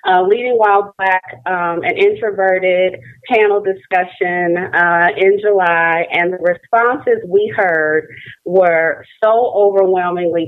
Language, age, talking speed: English, 30-49, 115 wpm